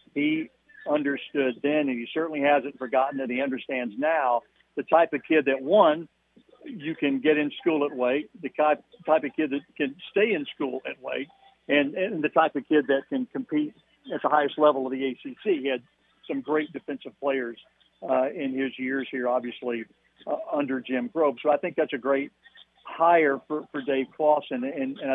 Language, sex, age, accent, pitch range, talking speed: English, male, 50-69, American, 130-150 Hz, 195 wpm